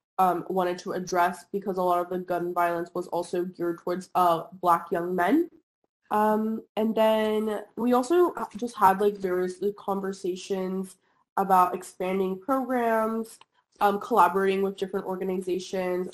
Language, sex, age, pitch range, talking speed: English, female, 20-39, 180-205 Hz, 140 wpm